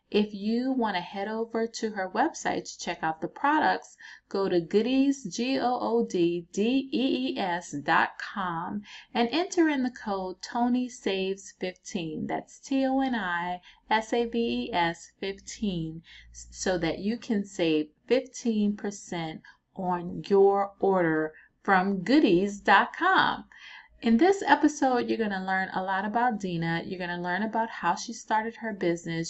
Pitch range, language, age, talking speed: 170-225 Hz, English, 30-49, 160 wpm